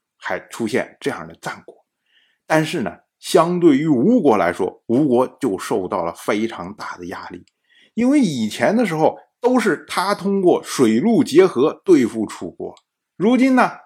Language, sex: Chinese, male